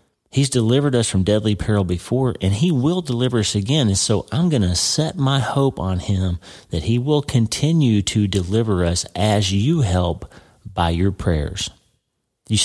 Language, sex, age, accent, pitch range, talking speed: English, male, 40-59, American, 95-125 Hz, 175 wpm